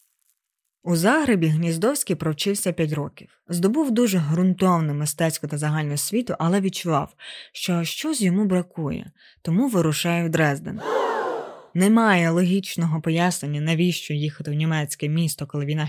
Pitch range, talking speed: 155-190 Hz, 125 wpm